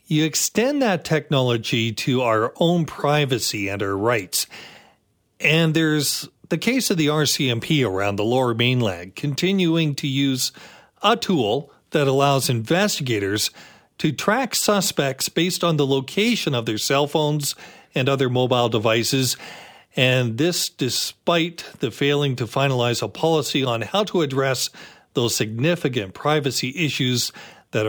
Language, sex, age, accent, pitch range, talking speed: English, male, 40-59, American, 120-155 Hz, 135 wpm